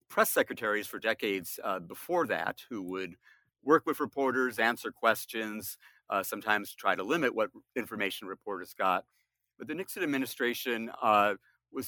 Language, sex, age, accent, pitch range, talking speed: English, male, 50-69, American, 95-120 Hz, 145 wpm